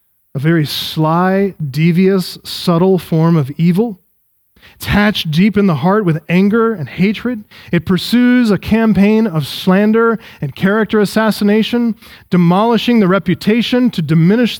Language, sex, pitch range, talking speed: English, male, 150-195 Hz, 130 wpm